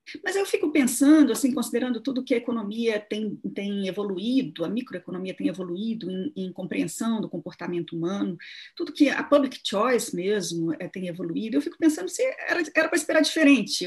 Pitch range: 185-290 Hz